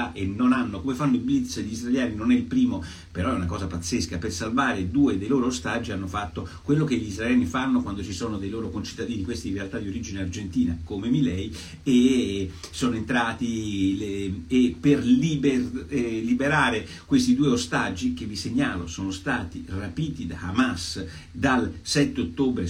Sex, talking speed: male, 180 wpm